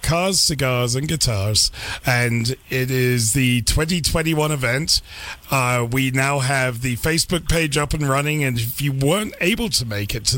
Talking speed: 170 wpm